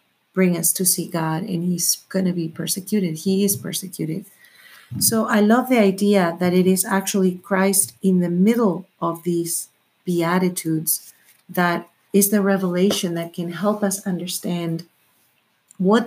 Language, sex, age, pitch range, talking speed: English, female, 40-59, 175-210 Hz, 150 wpm